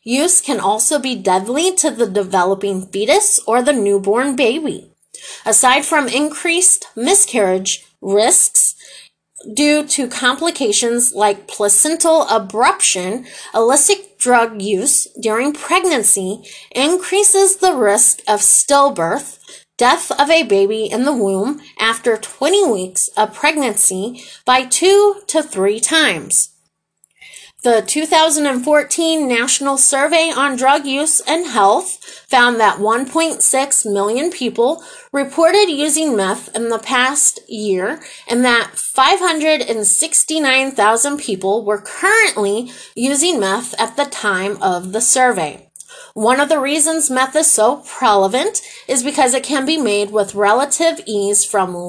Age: 30-49